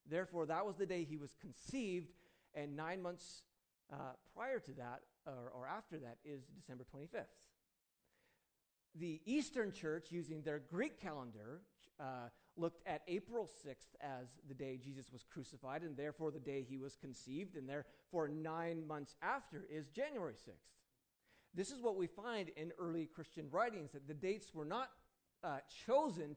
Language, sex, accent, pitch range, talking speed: English, male, American, 135-180 Hz, 160 wpm